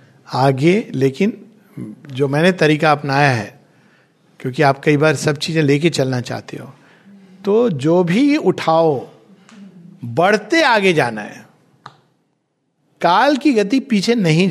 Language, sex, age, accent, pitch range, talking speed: Hindi, male, 50-69, native, 150-200 Hz, 125 wpm